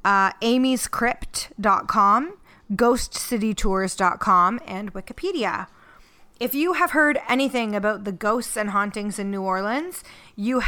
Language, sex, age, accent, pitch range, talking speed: English, female, 20-39, American, 195-235 Hz, 105 wpm